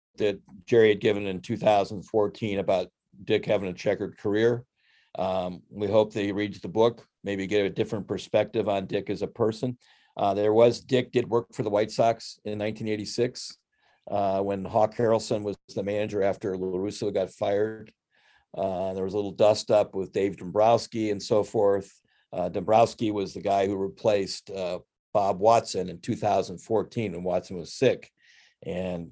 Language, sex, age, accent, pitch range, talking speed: English, male, 50-69, American, 100-115 Hz, 170 wpm